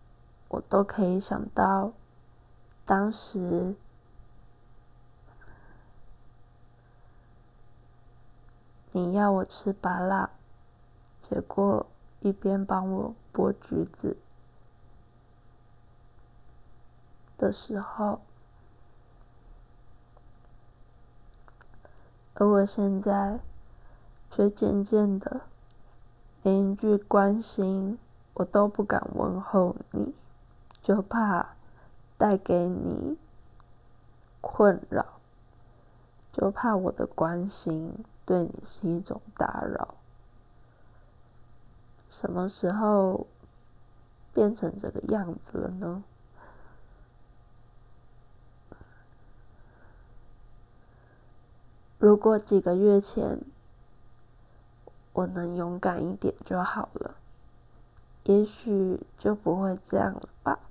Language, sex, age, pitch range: Chinese, female, 20-39, 120-195 Hz